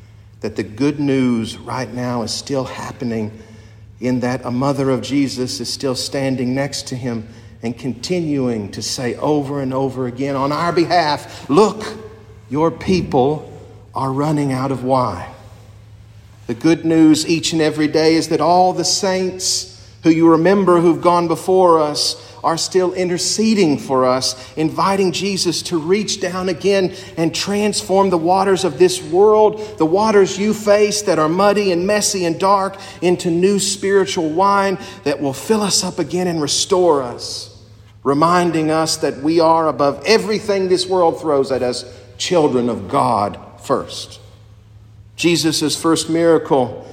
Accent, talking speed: American, 155 wpm